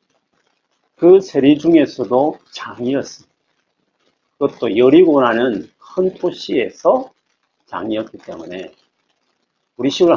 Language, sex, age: Korean, male, 40-59